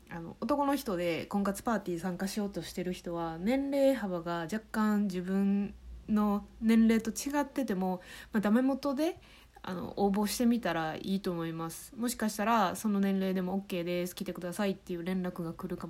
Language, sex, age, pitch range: Japanese, female, 20-39, 175-225 Hz